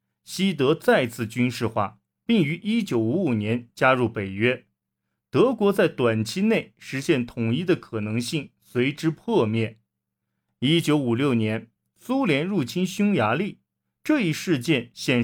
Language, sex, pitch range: Chinese, male, 110-170 Hz